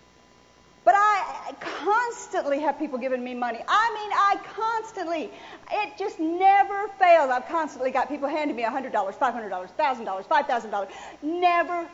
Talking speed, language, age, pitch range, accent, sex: 135 wpm, English, 50-69, 310-435 Hz, American, female